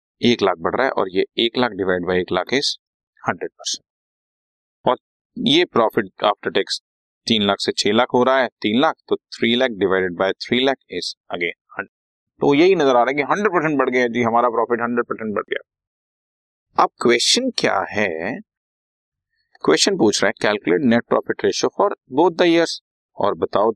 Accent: native